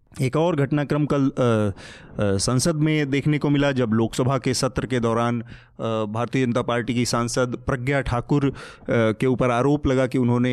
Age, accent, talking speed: 30-49, native, 170 wpm